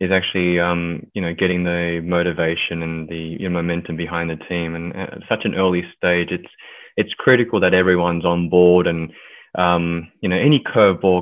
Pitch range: 85-90 Hz